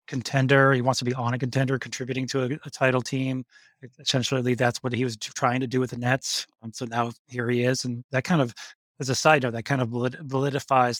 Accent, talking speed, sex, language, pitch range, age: American, 240 wpm, male, English, 125-140 Hz, 30-49